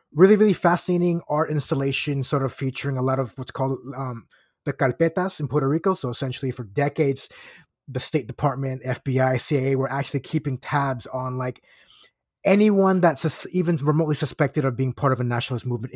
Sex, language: male, English